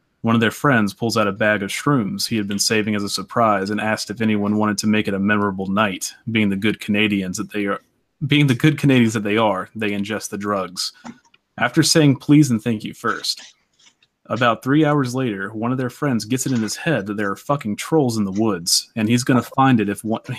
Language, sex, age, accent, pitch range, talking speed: English, male, 30-49, American, 105-130 Hz, 240 wpm